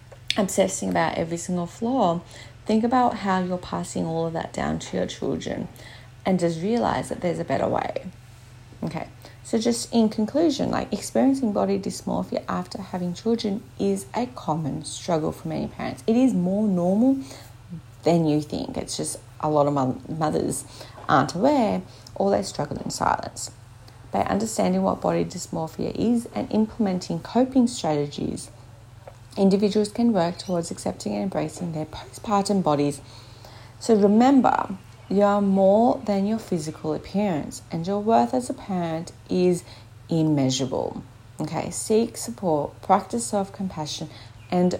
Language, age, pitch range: English, 30-49, 135-205 Hz